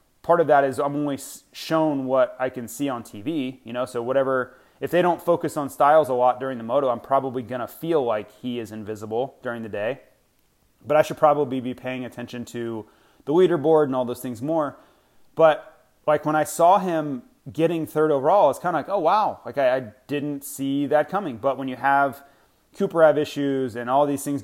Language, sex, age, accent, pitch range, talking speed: English, male, 30-49, American, 125-155 Hz, 215 wpm